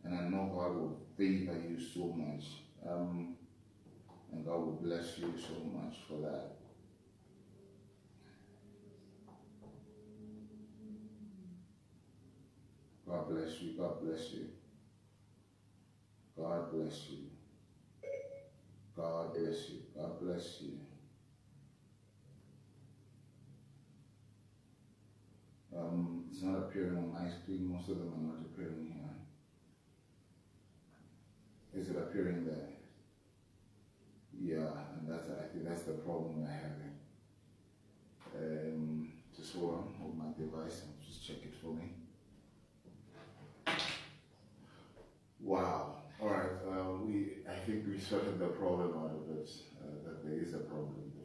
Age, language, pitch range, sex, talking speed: 30-49, English, 85-110 Hz, male, 115 wpm